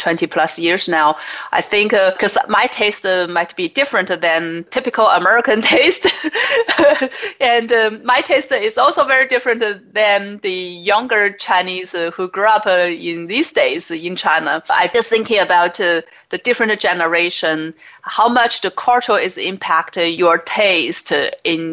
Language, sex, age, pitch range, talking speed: English, female, 30-49, 170-225 Hz, 160 wpm